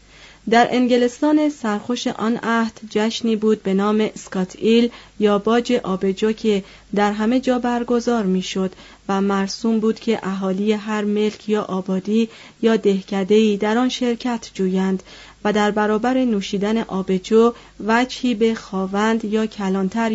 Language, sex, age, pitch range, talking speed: Persian, female, 30-49, 195-235 Hz, 130 wpm